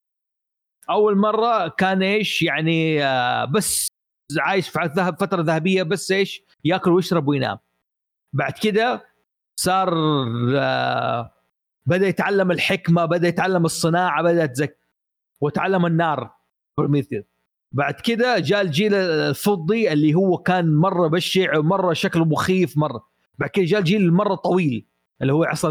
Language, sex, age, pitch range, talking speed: Arabic, male, 40-59, 135-175 Hz, 120 wpm